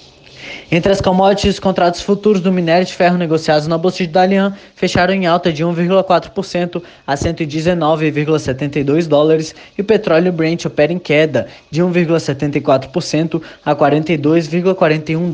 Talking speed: 135 wpm